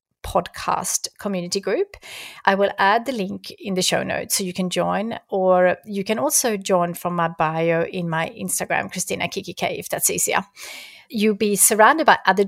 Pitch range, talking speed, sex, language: 180-225 Hz, 185 wpm, female, English